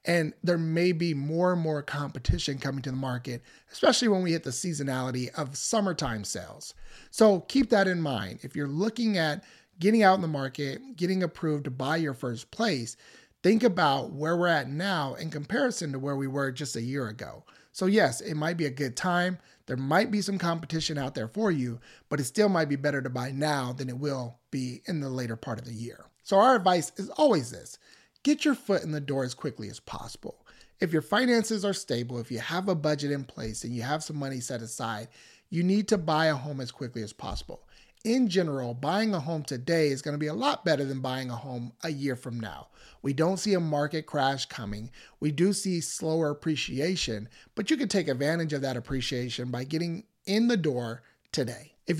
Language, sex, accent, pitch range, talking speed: English, male, American, 130-180 Hz, 215 wpm